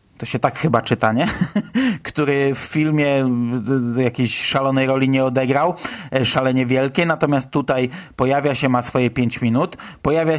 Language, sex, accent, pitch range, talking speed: Polish, male, native, 125-160 Hz, 150 wpm